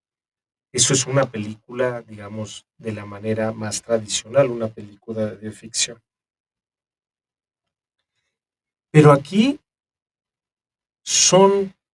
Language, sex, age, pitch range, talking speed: Spanish, male, 40-59, 110-130 Hz, 85 wpm